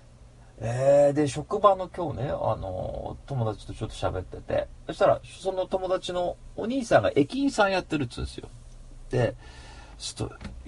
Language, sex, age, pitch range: Japanese, male, 40-59, 90-140 Hz